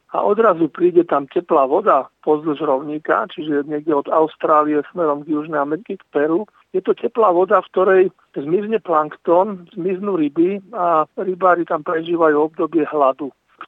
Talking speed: 160 wpm